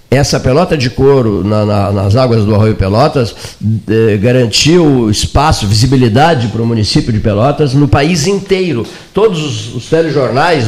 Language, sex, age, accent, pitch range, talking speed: Portuguese, male, 50-69, Brazilian, 115-160 Hz, 130 wpm